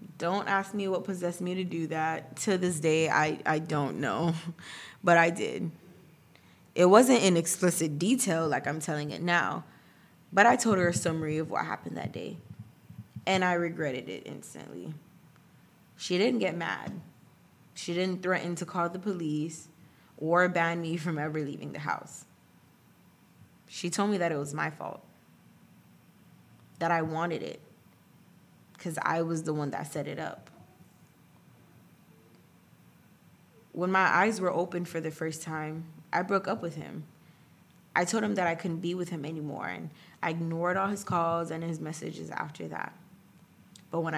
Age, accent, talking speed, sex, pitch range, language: 20-39, American, 165 wpm, female, 160-180 Hz, English